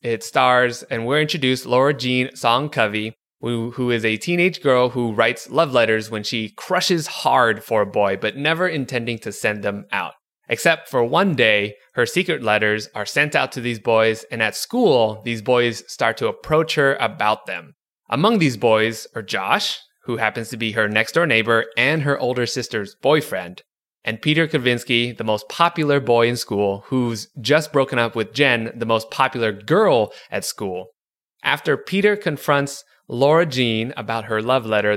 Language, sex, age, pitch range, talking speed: English, male, 20-39, 115-145 Hz, 180 wpm